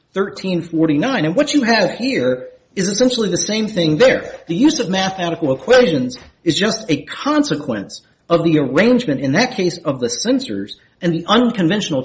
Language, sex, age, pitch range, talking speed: English, male, 40-59, 160-235 Hz, 165 wpm